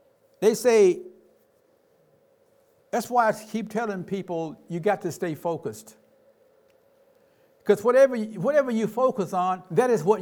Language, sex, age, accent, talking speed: English, male, 60-79, American, 130 wpm